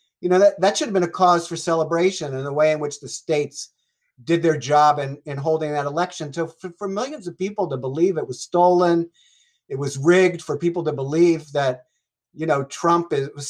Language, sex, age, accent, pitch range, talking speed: English, male, 50-69, American, 145-170 Hz, 220 wpm